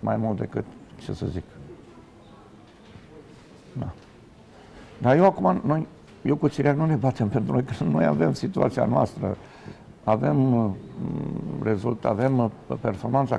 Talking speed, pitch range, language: 135 wpm, 100-135 Hz, Romanian